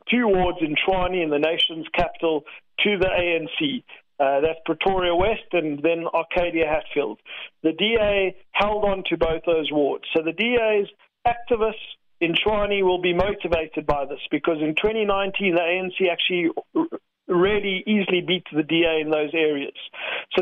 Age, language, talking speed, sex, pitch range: 50-69, English, 155 wpm, male, 165-205 Hz